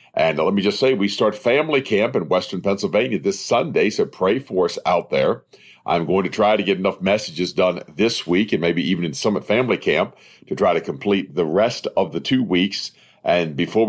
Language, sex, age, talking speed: English, male, 50-69, 215 wpm